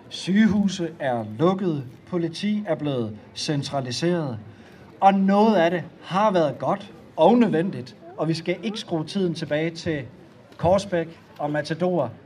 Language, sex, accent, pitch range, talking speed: Danish, male, native, 150-180 Hz, 130 wpm